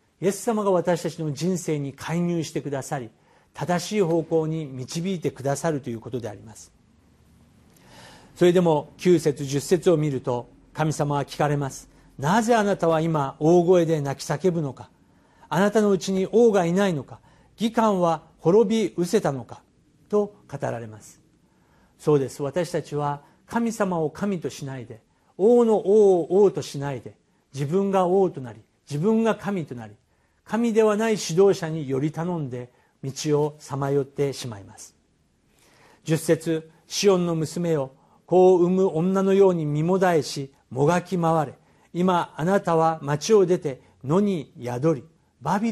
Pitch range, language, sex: 140-185 Hz, Japanese, male